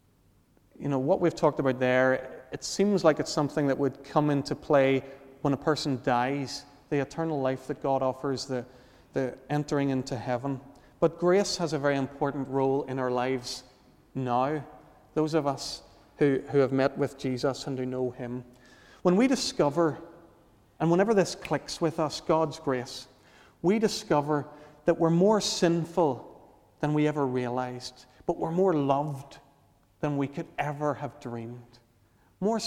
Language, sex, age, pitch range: English, male, 40-59, 125-150 Hz